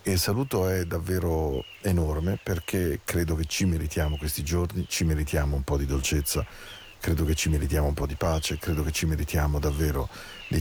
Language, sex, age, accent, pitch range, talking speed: Spanish, male, 40-59, Italian, 75-90 Hz, 180 wpm